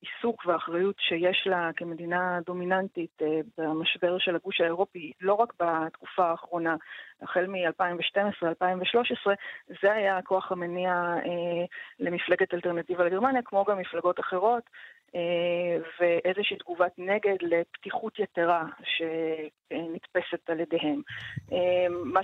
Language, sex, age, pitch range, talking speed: Hebrew, female, 30-49, 170-200 Hz, 95 wpm